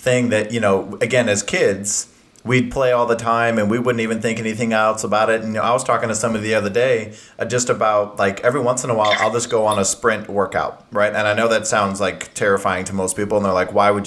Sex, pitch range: male, 105-125 Hz